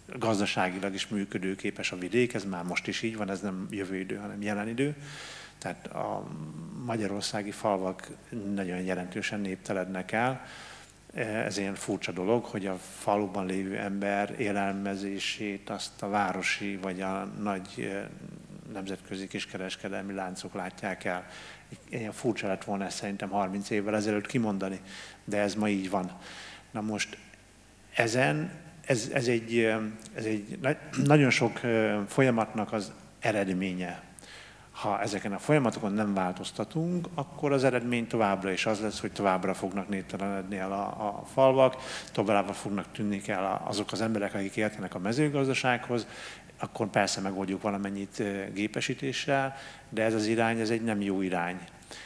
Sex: male